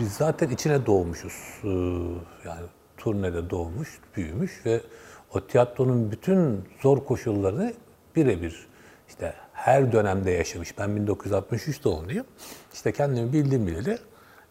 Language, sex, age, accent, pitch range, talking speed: Turkish, male, 60-79, native, 100-150 Hz, 110 wpm